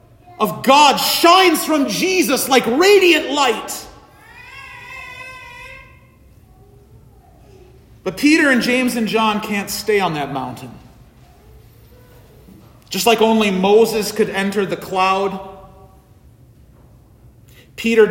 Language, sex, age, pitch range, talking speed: English, male, 40-59, 135-205 Hz, 95 wpm